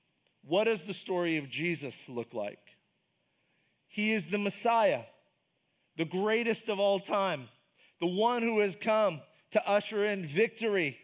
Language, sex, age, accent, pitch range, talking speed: English, male, 30-49, American, 175-230 Hz, 140 wpm